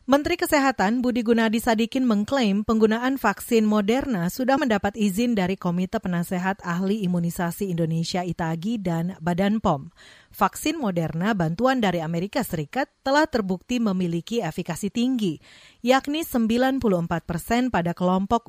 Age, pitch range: 40-59, 180-245 Hz